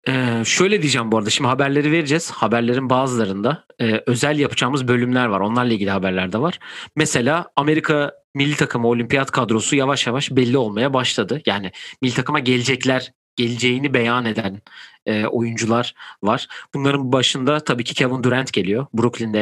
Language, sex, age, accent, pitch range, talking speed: Turkish, male, 40-59, native, 120-145 Hz, 140 wpm